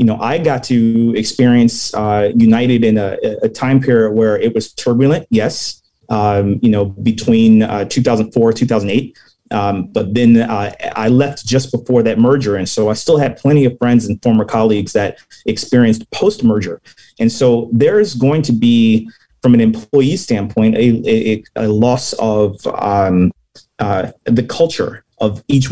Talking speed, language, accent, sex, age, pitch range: 165 wpm, English, American, male, 30-49, 110-125 Hz